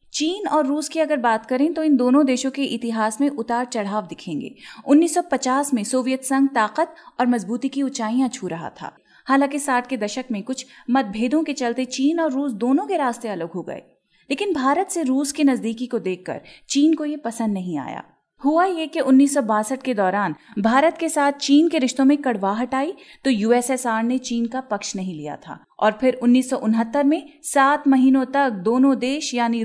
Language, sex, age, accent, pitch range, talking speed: Hindi, female, 30-49, native, 225-285 Hz, 190 wpm